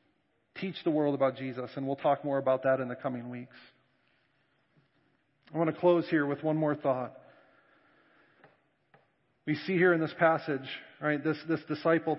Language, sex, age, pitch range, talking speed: English, male, 40-59, 140-170 Hz, 165 wpm